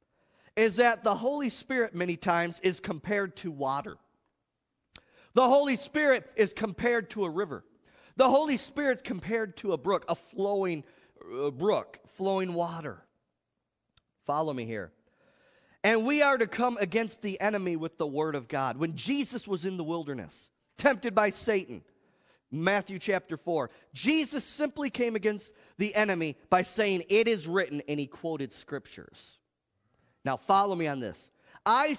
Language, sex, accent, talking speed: English, male, American, 155 wpm